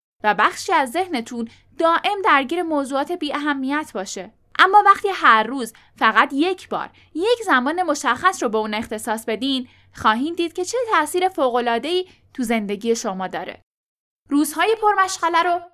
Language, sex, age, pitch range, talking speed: Persian, female, 10-29, 230-335 Hz, 145 wpm